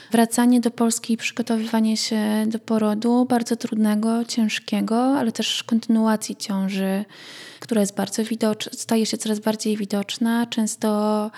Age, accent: 20-39, native